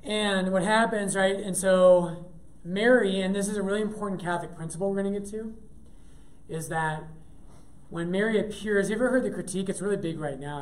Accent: American